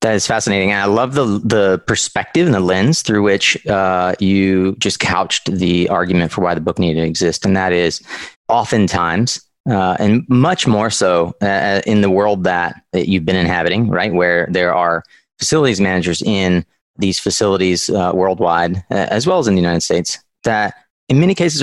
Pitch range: 95-130 Hz